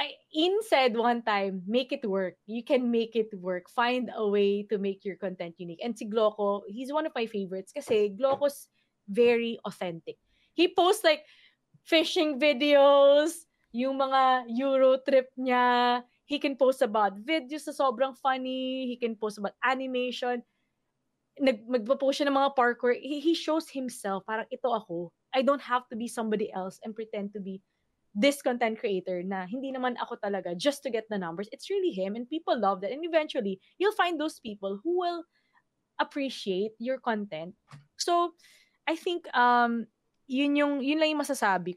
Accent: native